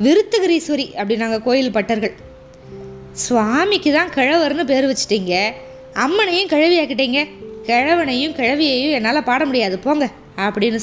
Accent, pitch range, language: native, 240-320 Hz, Tamil